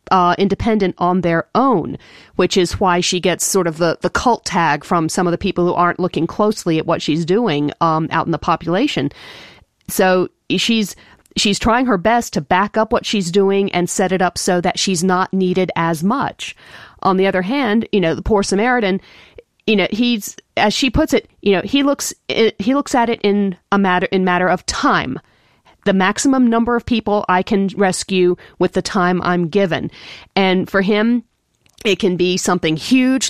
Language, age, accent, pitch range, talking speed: English, 40-59, American, 175-210 Hz, 195 wpm